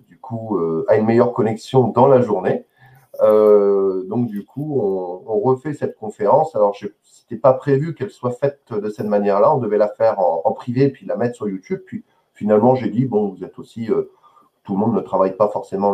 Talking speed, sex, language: 210 wpm, male, French